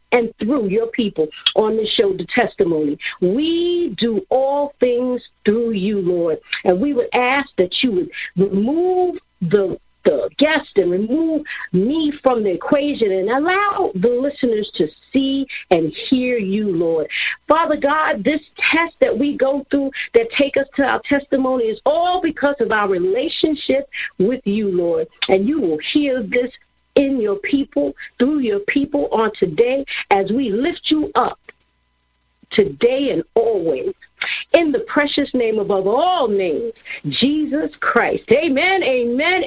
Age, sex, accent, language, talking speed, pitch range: 50-69, female, American, English, 150 wpm, 215-315 Hz